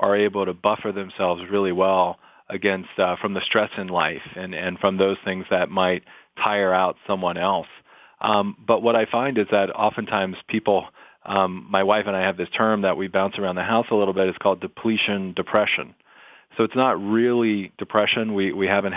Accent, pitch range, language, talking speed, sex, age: American, 95-110 Hz, English, 200 wpm, male, 40-59